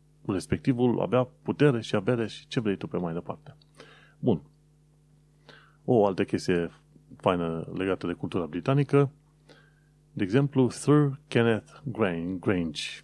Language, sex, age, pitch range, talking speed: Romanian, male, 30-49, 100-150 Hz, 120 wpm